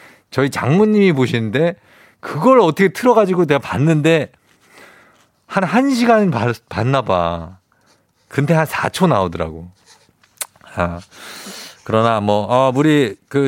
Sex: male